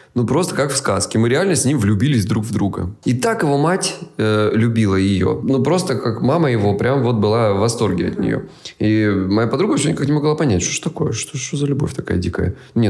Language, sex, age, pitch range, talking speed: Russian, male, 20-39, 100-140 Hz, 235 wpm